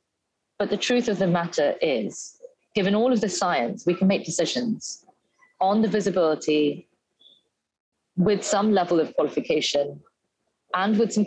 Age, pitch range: 30-49, 155-210 Hz